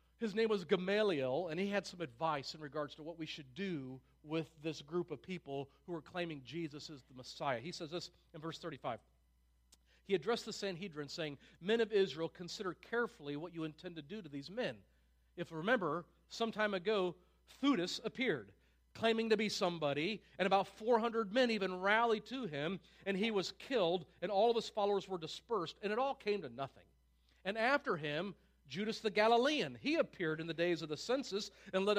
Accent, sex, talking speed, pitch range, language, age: American, male, 195 wpm, 145-205 Hz, English, 40-59